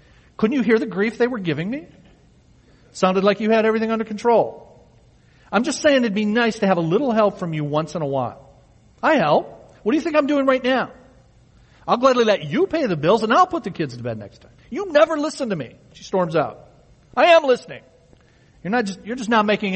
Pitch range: 130-210 Hz